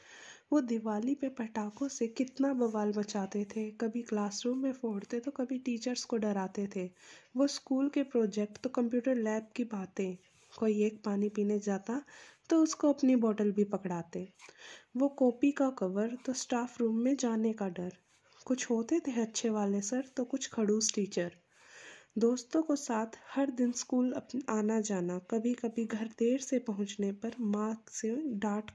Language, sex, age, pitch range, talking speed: Hindi, female, 20-39, 210-270 Hz, 165 wpm